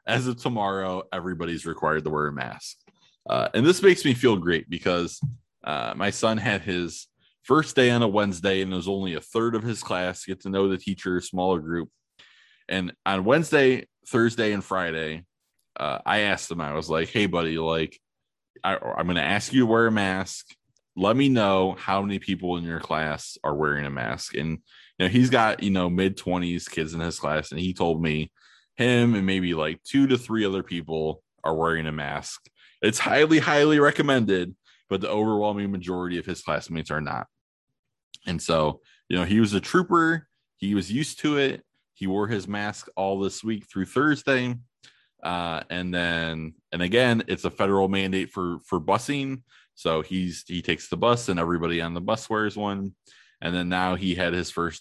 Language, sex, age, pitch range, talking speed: English, male, 20-39, 85-110 Hz, 195 wpm